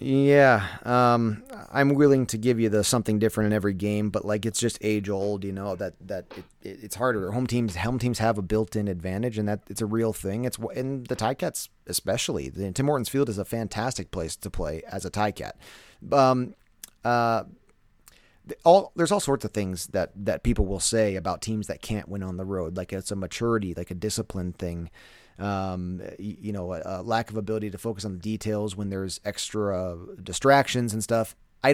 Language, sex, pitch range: English, male, 100-120 Hz